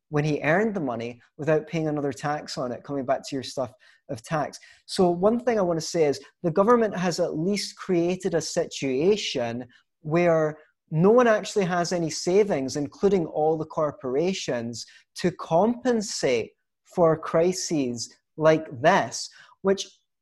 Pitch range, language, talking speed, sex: 140-180 Hz, English, 155 wpm, male